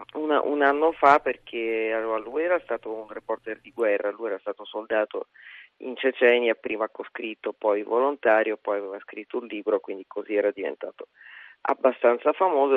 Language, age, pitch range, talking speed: Italian, 40-59, 110-140 Hz, 160 wpm